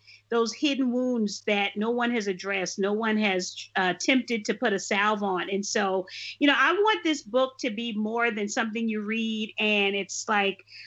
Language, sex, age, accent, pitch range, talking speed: English, female, 40-59, American, 210-260 Hz, 200 wpm